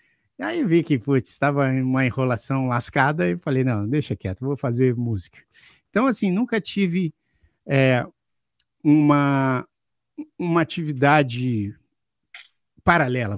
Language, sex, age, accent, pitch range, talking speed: Portuguese, male, 50-69, Brazilian, 120-165 Hz, 115 wpm